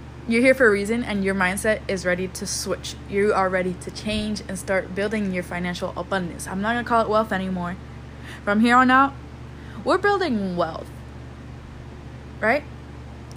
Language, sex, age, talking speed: English, female, 20-39, 170 wpm